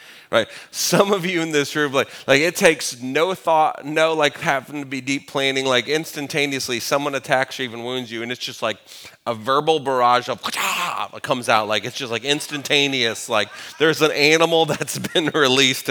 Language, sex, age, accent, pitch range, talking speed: English, male, 30-49, American, 120-145 Hz, 190 wpm